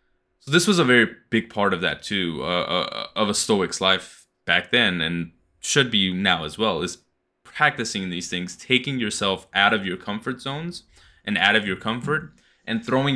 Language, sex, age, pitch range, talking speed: English, male, 20-39, 90-115 Hz, 185 wpm